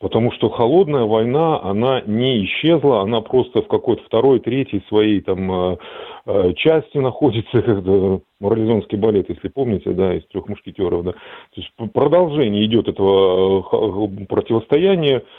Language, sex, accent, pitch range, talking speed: Russian, male, native, 95-125 Hz, 115 wpm